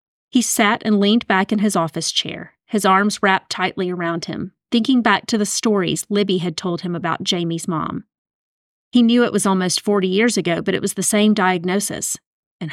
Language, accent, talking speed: English, American, 200 wpm